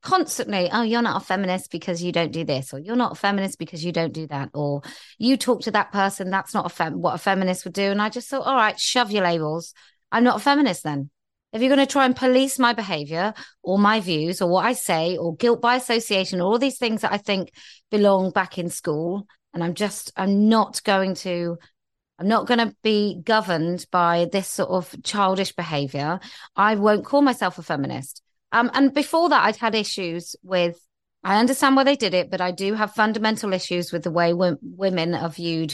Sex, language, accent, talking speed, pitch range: female, English, British, 220 wpm, 170-225 Hz